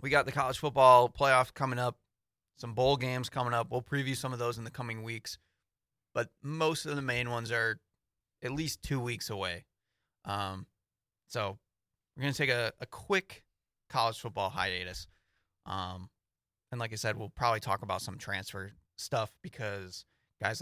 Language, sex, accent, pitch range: English, male, American, 100-130 Hz